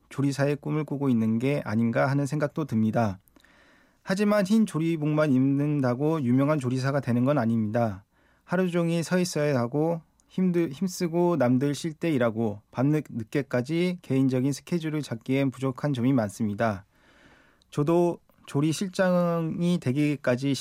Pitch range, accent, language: 125-160 Hz, native, Korean